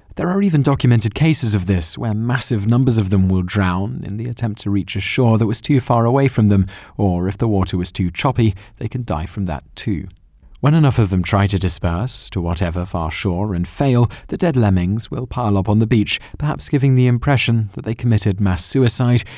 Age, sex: 30-49, male